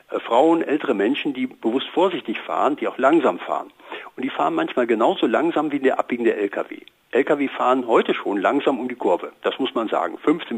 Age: 60-79